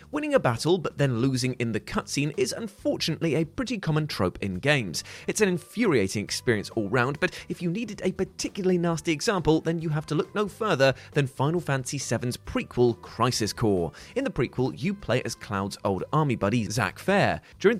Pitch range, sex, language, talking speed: 105-165 Hz, male, English, 195 wpm